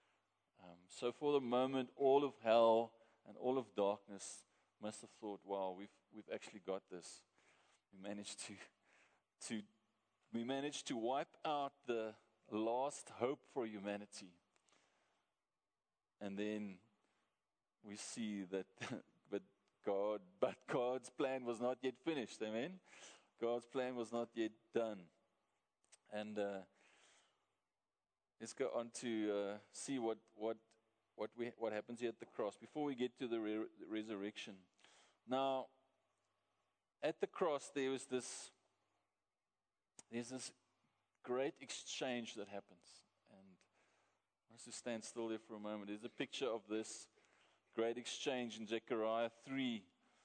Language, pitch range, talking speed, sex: English, 105-125 Hz, 135 wpm, male